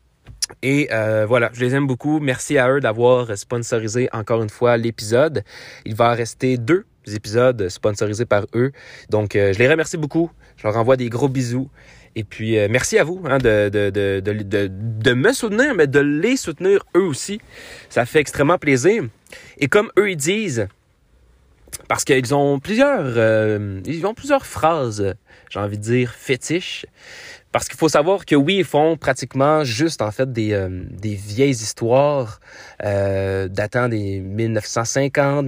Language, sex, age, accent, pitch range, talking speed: French, male, 30-49, Canadian, 110-150 Hz, 170 wpm